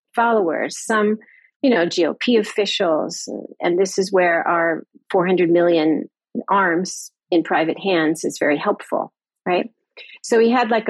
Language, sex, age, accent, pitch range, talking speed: English, female, 40-59, American, 165-210 Hz, 140 wpm